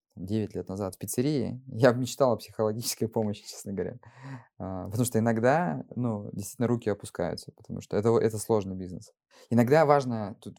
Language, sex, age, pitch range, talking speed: Russian, male, 20-39, 100-125 Hz, 165 wpm